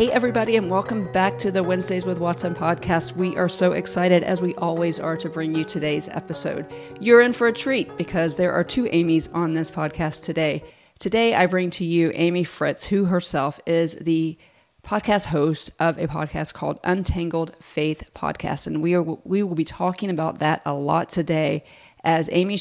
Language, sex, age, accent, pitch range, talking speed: English, female, 40-59, American, 160-185 Hz, 190 wpm